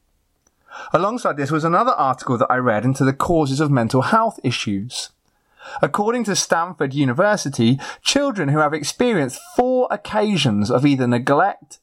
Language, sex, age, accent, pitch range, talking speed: English, male, 30-49, British, 120-175 Hz, 140 wpm